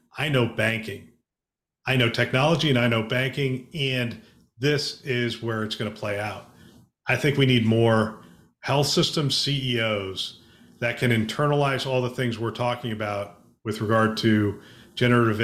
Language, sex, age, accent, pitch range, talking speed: English, male, 40-59, American, 105-125 Hz, 150 wpm